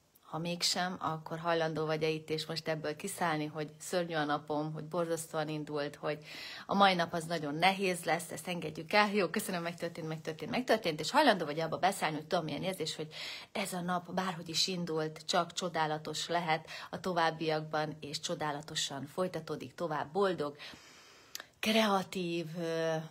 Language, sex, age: Hungarian, female, 30-49